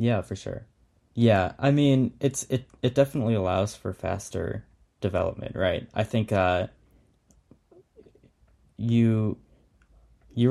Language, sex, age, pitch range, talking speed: English, male, 10-29, 90-110 Hz, 115 wpm